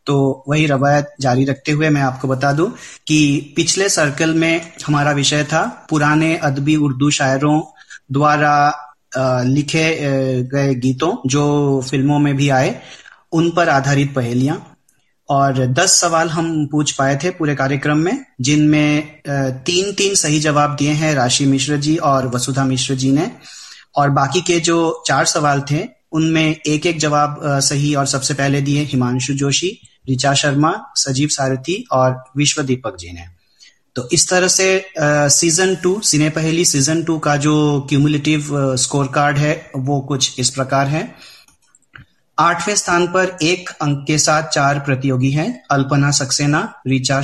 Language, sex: Hindi, male